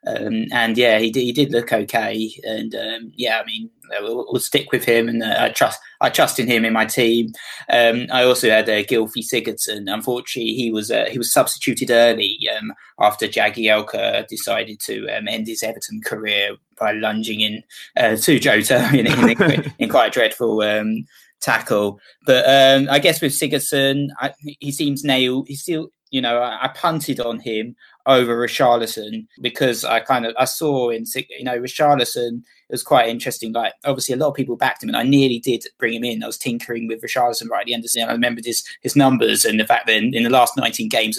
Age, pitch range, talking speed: 20-39, 115-135 Hz, 215 wpm